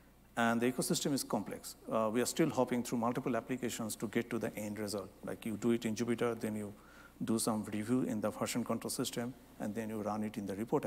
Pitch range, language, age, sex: 105-125 Hz, English, 60-79, male